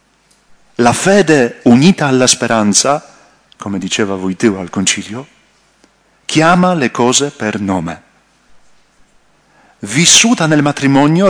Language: Italian